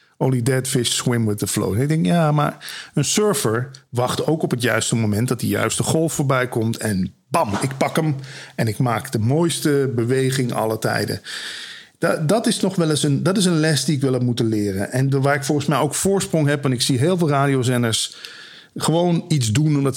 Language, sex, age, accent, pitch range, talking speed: Dutch, male, 50-69, Dutch, 125-175 Hz, 215 wpm